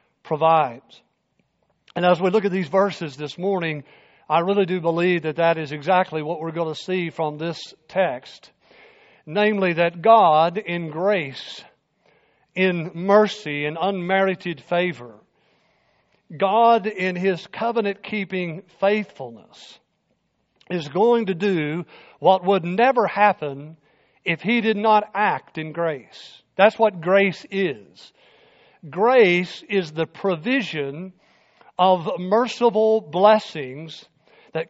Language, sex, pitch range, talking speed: English, male, 160-205 Hz, 120 wpm